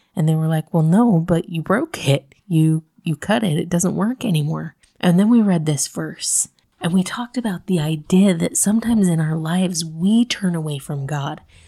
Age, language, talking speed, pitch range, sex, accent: 30-49, English, 205 wpm, 160-195 Hz, female, American